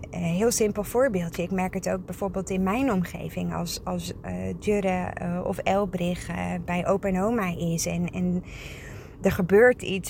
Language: Dutch